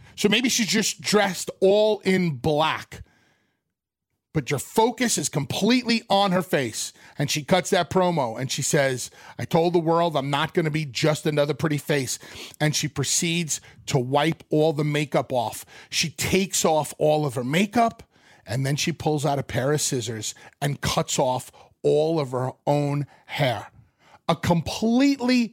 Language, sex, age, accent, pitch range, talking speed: English, male, 40-59, American, 145-185 Hz, 170 wpm